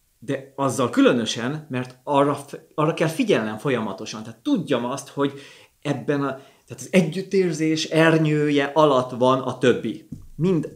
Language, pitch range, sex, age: Hungarian, 115-160 Hz, male, 30-49